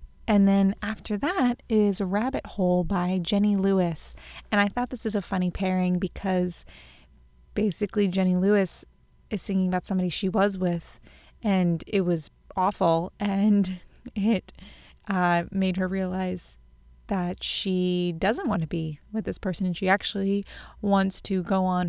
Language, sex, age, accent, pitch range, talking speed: English, female, 20-39, American, 180-200 Hz, 150 wpm